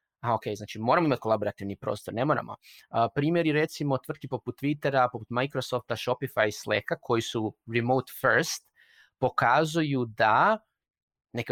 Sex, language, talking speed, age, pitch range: male, Croatian, 140 wpm, 20-39, 120-155 Hz